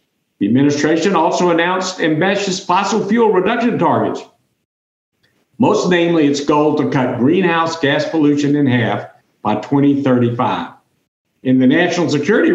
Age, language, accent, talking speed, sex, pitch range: 60-79, English, American, 125 wpm, male, 130-175 Hz